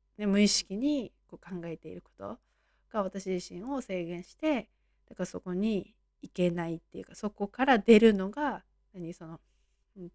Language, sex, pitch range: Japanese, female, 170-200 Hz